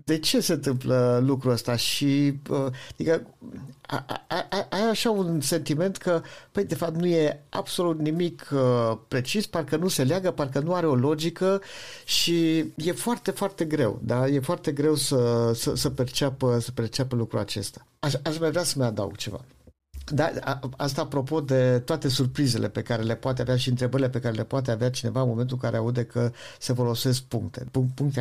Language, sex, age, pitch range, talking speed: Romanian, male, 50-69, 120-150 Hz, 175 wpm